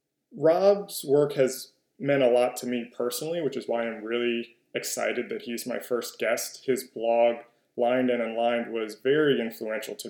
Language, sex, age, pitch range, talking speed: English, male, 20-39, 115-130 Hz, 170 wpm